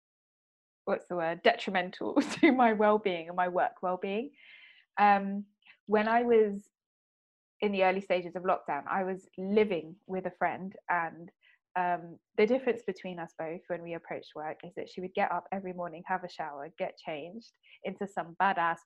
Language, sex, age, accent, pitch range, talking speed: English, female, 20-39, British, 175-215 Hz, 170 wpm